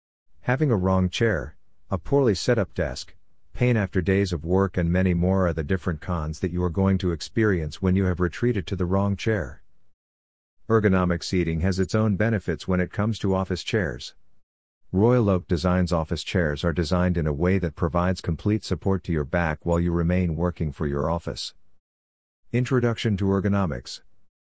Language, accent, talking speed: English, American, 180 wpm